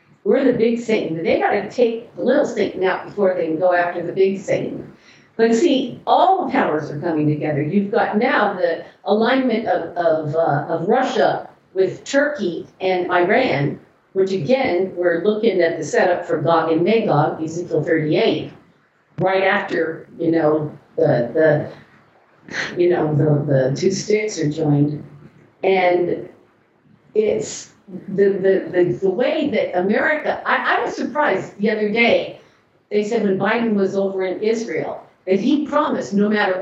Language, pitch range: English, 170-235 Hz